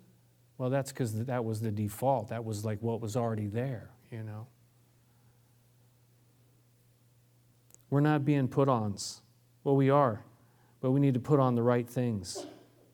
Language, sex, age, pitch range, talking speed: English, male, 40-59, 115-130 Hz, 155 wpm